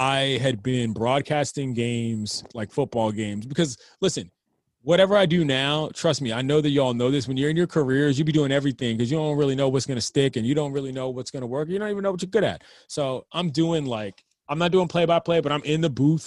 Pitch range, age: 120-160 Hz, 30-49